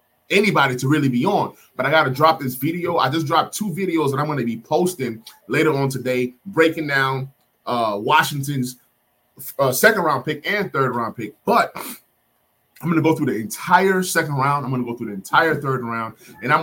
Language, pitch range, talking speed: English, 125-175 Hz, 215 wpm